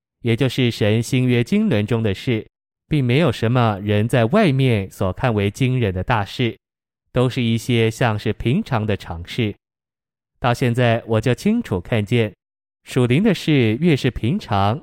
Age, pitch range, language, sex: 20-39, 105-125 Hz, Chinese, male